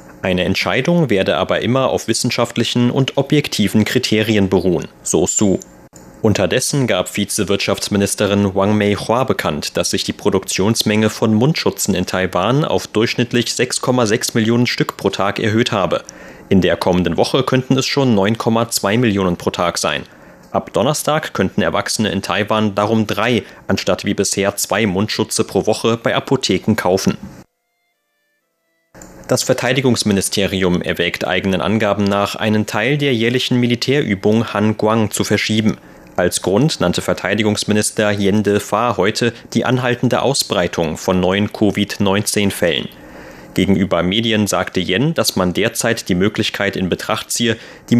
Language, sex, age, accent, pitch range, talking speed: German, male, 30-49, German, 100-120 Hz, 135 wpm